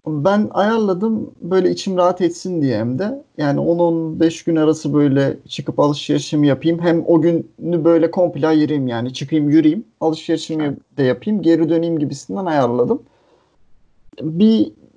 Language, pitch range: Turkish, 135-170 Hz